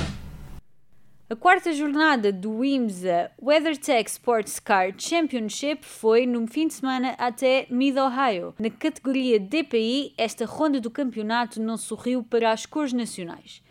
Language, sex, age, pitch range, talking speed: Portuguese, female, 20-39, 220-275 Hz, 125 wpm